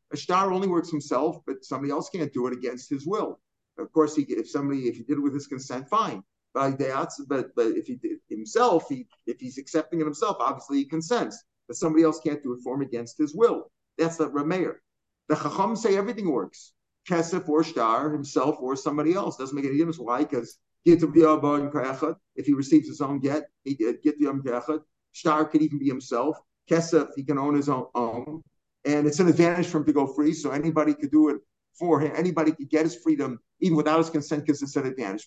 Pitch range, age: 140-165 Hz, 50-69